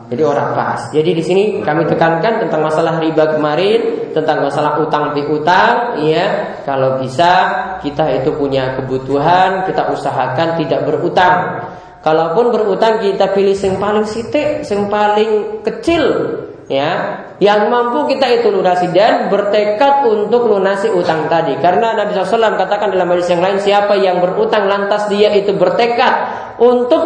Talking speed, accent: 150 wpm, native